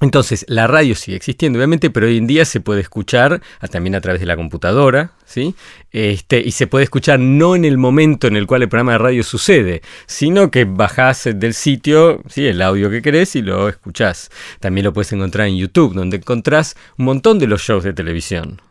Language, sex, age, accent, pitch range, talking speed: Spanish, male, 40-59, Argentinian, 105-145 Hz, 210 wpm